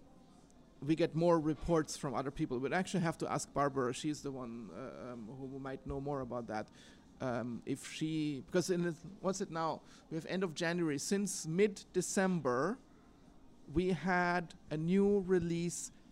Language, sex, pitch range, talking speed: English, male, 140-175 Hz, 170 wpm